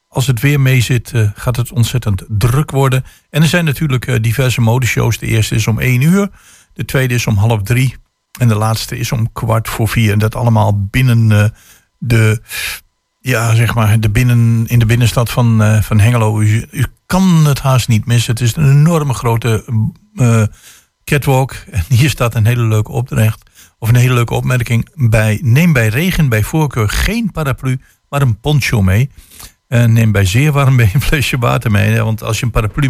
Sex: male